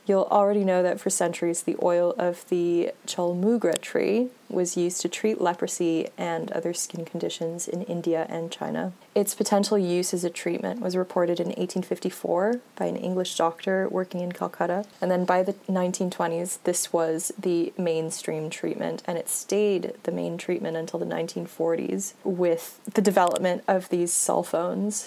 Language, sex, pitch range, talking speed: English, female, 170-195 Hz, 165 wpm